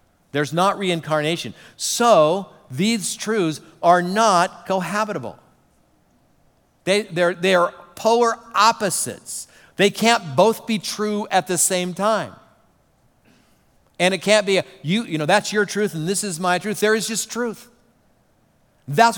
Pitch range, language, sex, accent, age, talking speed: 160-210 Hz, English, male, American, 50-69, 135 wpm